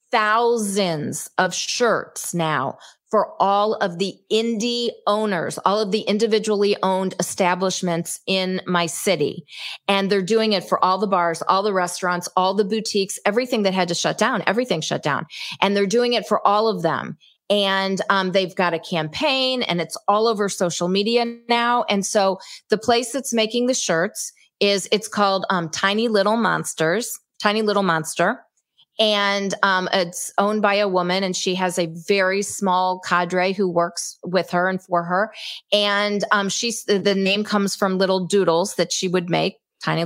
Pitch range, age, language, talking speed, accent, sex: 180-215 Hz, 40-59, English, 175 wpm, American, female